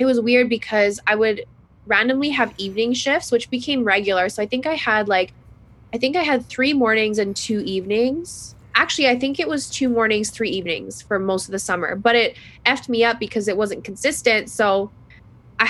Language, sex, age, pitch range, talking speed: English, female, 10-29, 195-235 Hz, 205 wpm